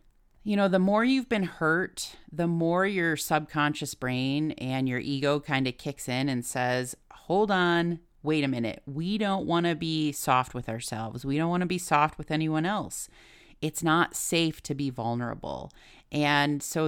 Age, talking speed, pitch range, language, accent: 30-49, 180 wpm, 130-165 Hz, English, American